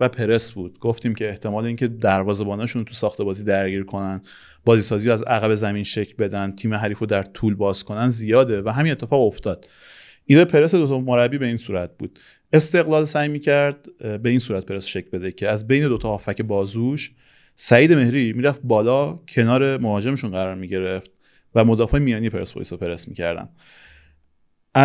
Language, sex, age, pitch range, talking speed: Persian, male, 30-49, 105-140 Hz, 170 wpm